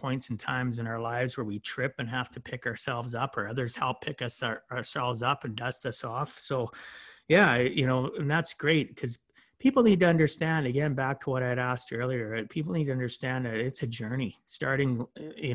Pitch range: 120-140 Hz